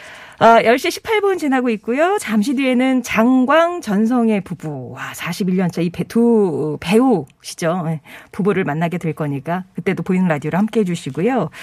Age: 40-59